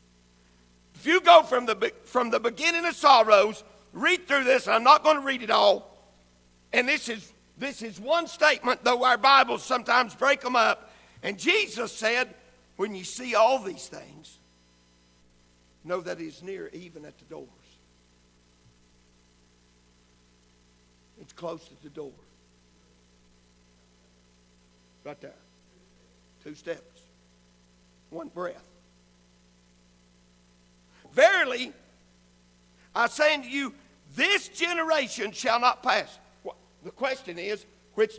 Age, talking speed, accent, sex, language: 60-79, 120 wpm, American, male, English